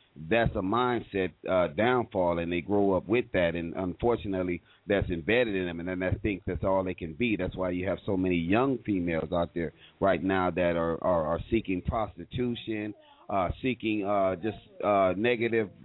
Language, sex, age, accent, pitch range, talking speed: English, male, 40-59, American, 95-115 Hz, 190 wpm